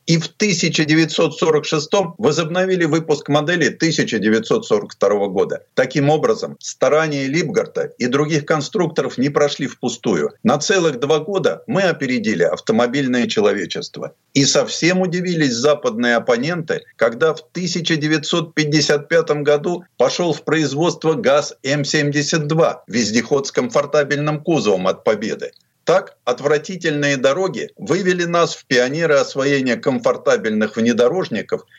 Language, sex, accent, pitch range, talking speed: Russian, male, native, 140-175 Hz, 105 wpm